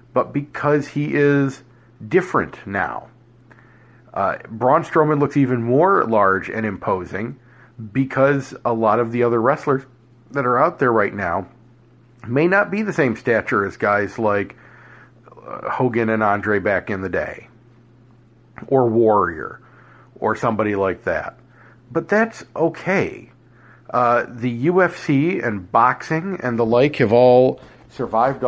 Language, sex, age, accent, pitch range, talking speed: English, male, 50-69, American, 115-140 Hz, 135 wpm